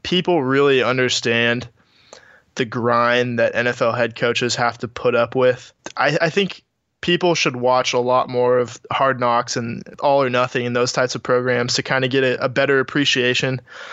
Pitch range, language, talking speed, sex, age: 125-140 Hz, English, 185 wpm, male, 20-39